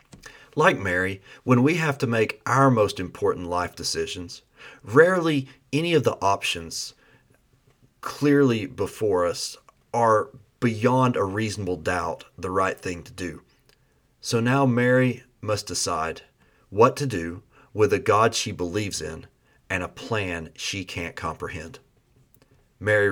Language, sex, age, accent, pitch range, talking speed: English, male, 40-59, American, 100-135 Hz, 130 wpm